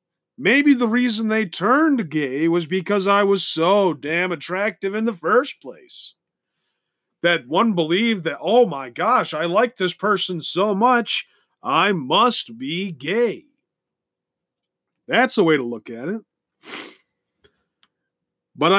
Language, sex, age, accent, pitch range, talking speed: English, male, 40-59, American, 160-215 Hz, 135 wpm